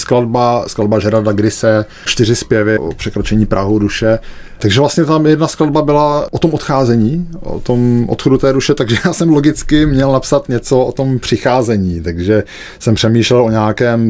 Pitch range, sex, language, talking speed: 105-130 Hz, male, Czech, 165 wpm